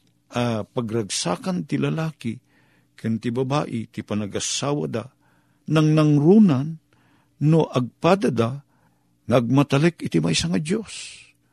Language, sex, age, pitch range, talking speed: Filipino, male, 50-69, 100-140 Hz, 105 wpm